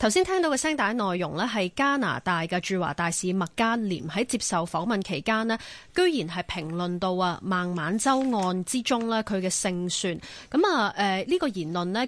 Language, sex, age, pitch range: Chinese, female, 20-39, 180-245 Hz